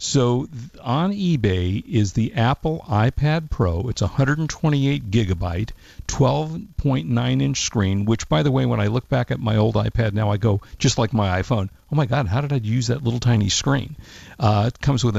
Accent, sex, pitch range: American, male, 105-135 Hz